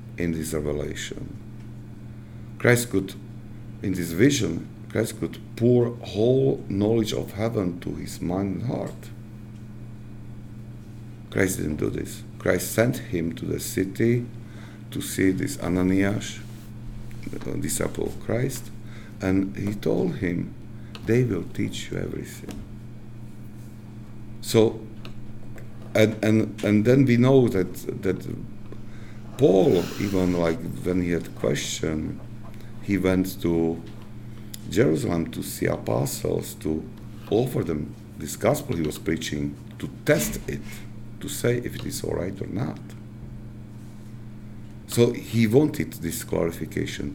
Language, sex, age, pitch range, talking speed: English, male, 50-69, 100-115 Hz, 120 wpm